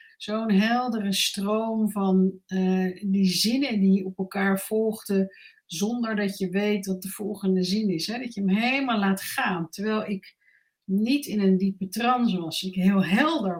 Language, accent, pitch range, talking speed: Dutch, Dutch, 185-210 Hz, 165 wpm